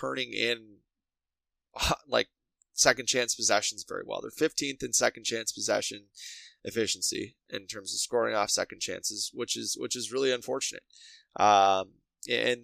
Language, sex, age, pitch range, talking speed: English, male, 20-39, 105-135 Hz, 145 wpm